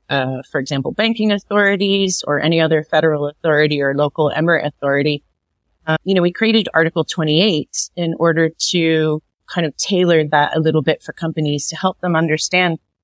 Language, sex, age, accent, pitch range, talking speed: English, female, 30-49, American, 145-170 Hz, 170 wpm